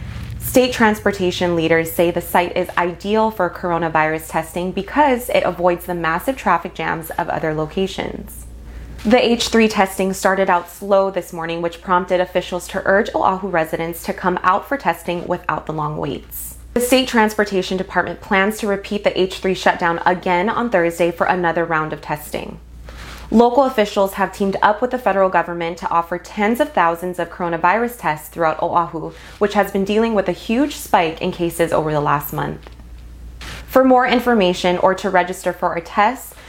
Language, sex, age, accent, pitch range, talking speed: English, female, 20-39, American, 170-210 Hz, 175 wpm